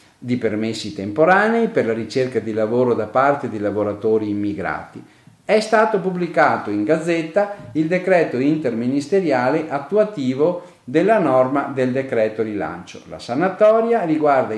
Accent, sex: native, male